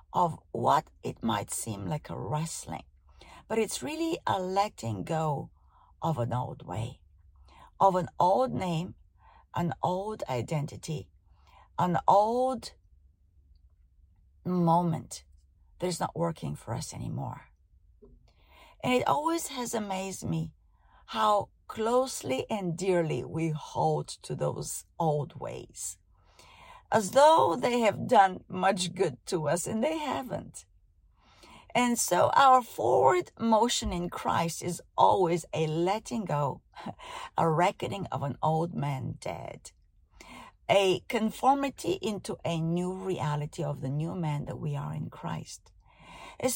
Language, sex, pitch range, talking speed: English, female, 130-215 Hz, 125 wpm